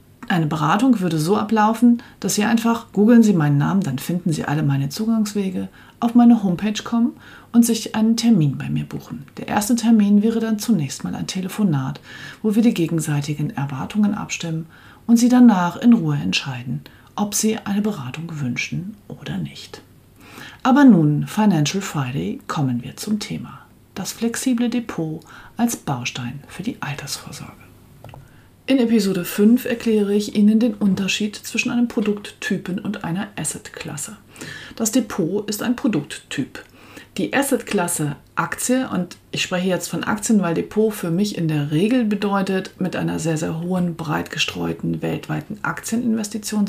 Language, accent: German, German